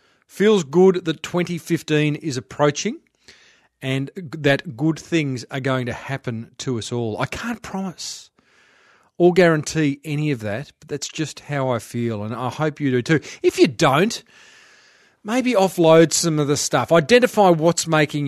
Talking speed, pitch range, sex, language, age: 160 wpm, 125-175 Hz, male, English, 40-59